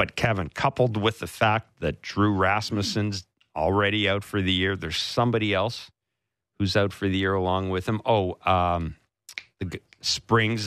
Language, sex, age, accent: English, male, 50-69, American